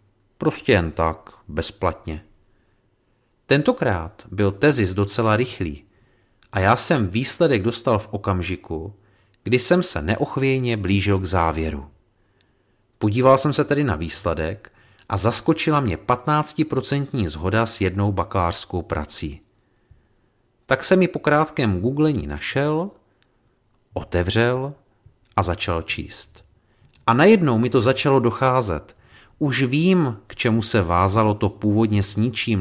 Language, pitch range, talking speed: Czech, 95-125 Hz, 120 wpm